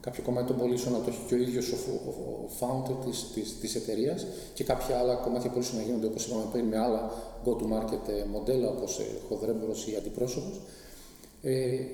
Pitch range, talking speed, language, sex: 125-150 Hz, 190 wpm, Greek, male